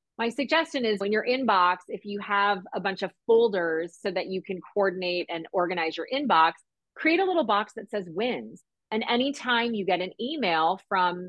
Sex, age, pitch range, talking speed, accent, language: female, 30-49, 185-245 Hz, 190 wpm, American, English